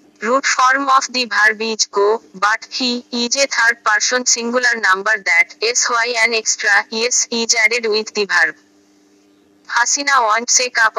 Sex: female